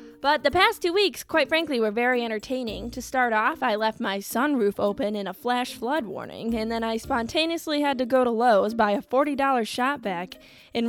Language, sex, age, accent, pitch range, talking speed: English, female, 10-29, American, 200-260 Hz, 210 wpm